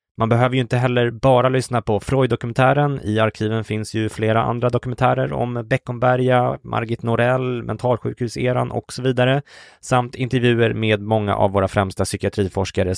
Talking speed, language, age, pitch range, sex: 150 wpm, Swedish, 20-39, 105-125 Hz, male